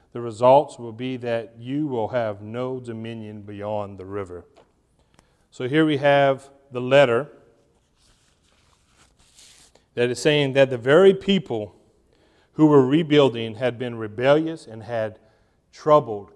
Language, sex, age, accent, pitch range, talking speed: English, male, 40-59, American, 110-135 Hz, 130 wpm